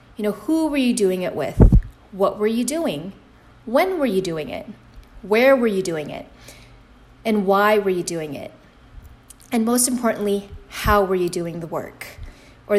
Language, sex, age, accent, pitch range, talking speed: English, female, 20-39, American, 185-225 Hz, 180 wpm